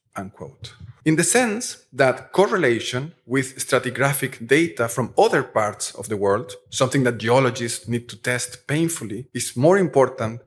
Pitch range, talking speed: 120-150 Hz, 145 wpm